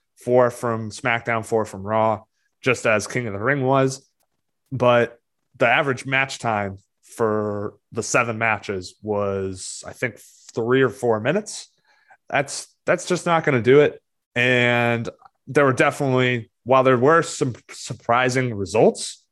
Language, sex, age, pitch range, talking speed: English, male, 20-39, 110-135 Hz, 145 wpm